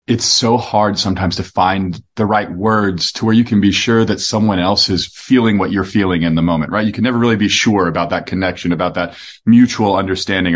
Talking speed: 225 wpm